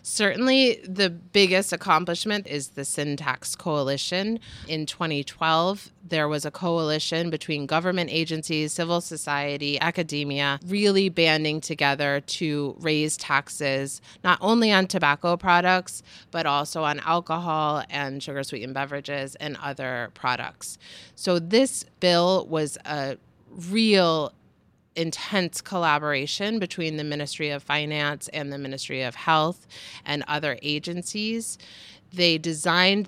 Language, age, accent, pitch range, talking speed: English, 30-49, American, 145-185 Hz, 115 wpm